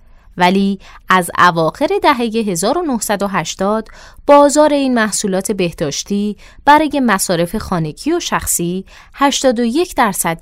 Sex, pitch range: female, 175-260 Hz